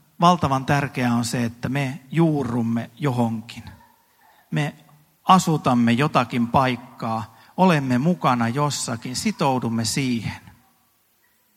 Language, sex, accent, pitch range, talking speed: Finnish, male, native, 115-155 Hz, 90 wpm